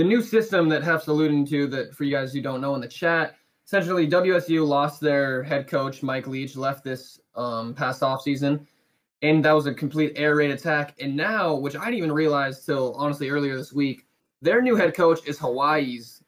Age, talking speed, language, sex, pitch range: 20-39, 205 wpm, English, male, 140-160 Hz